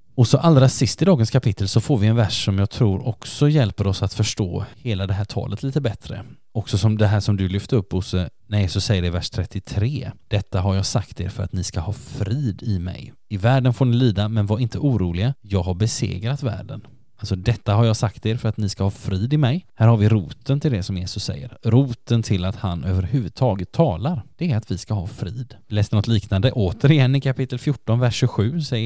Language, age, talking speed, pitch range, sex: Swedish, 20-39, 240 wpm, 100-125 Hz, male